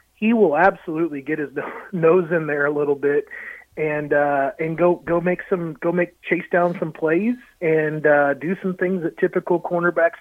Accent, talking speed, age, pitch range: American, 190 wpm, 30-49, 155-190 Hz